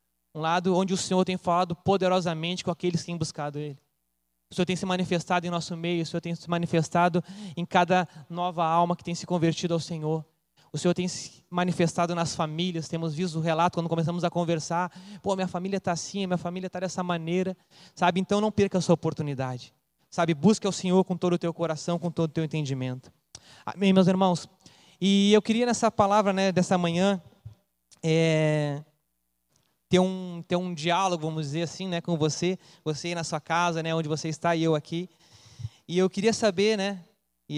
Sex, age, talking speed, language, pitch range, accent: male, 20-39, 195 wpm, Portuguese, 130-180 Hz, Brazilian